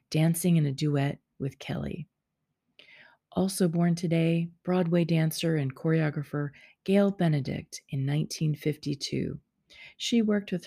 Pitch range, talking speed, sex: 145-170 Hz, 110 wpm, female